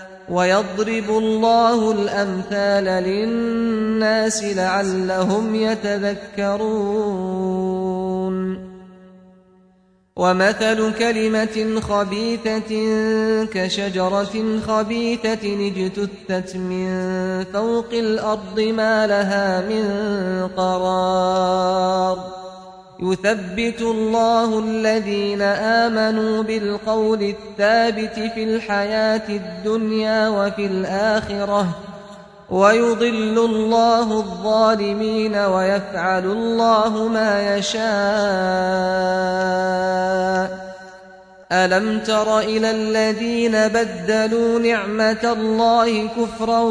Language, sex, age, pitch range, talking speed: Tamil, male, 30-49, 190-220 Hz, 60 wpm